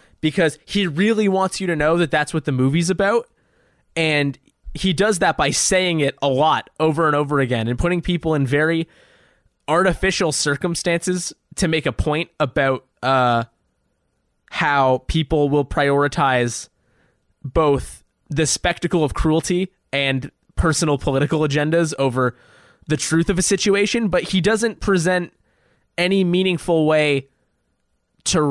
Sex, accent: male, American